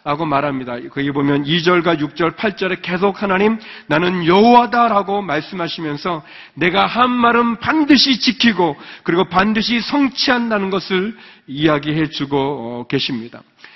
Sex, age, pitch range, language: male, 40-59, 160-220 Hz, Korean